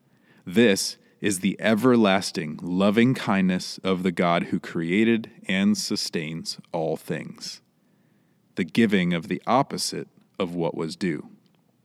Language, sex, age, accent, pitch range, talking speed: English, male, 30-49, American, 105-170 Hz, 120 wpm